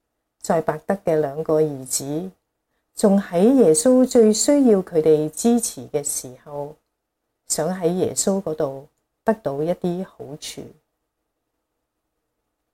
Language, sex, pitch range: Chinese, female, 150-210 Hz